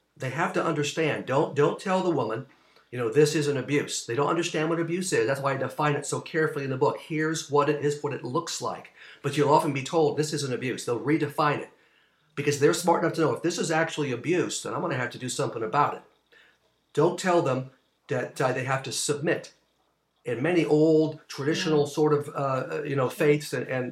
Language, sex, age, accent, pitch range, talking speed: English, male, 50-69, American, 140-165 Hz, 235 wpm